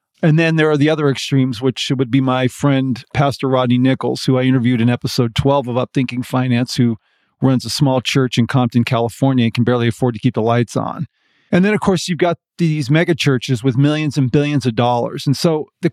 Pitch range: 130-155 Hz